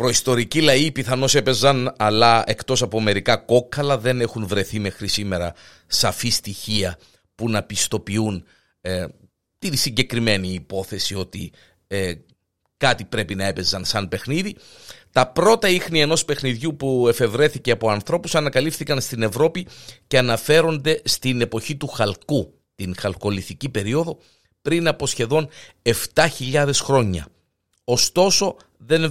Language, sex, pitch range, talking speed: Greek, male, 105-150 Hz, 120 wpm